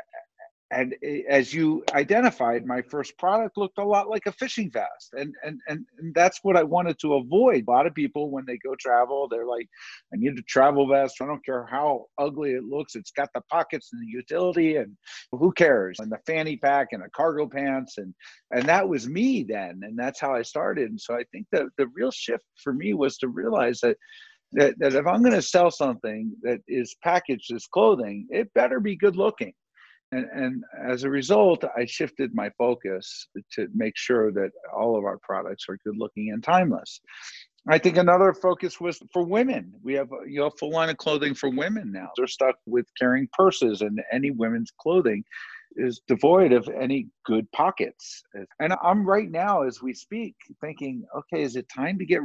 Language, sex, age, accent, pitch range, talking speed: English, male, 50-69, American, 125-200 Hz, 200 wpm